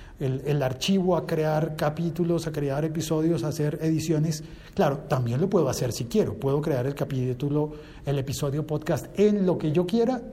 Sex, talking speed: male, 180 wpm